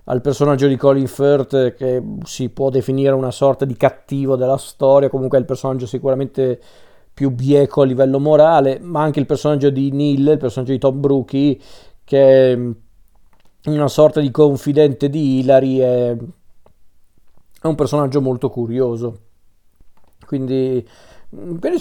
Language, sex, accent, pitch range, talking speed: Italian, male, native, 130-155 Hz, 140 wpm